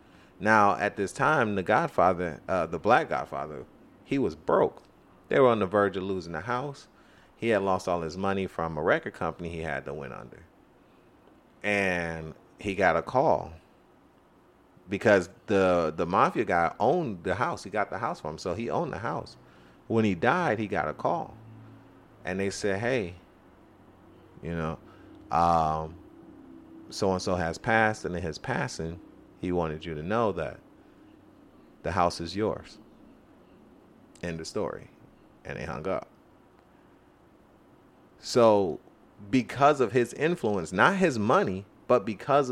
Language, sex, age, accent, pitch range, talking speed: English, male, 30-49, American, 85-110 Hz, 155 wpm